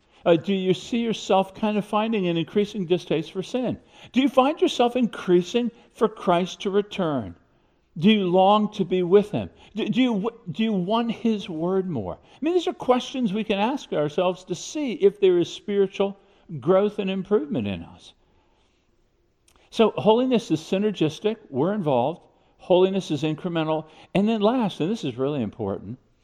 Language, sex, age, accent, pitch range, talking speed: English, male, 50-69, American, 150-210 Hz, 170 wpm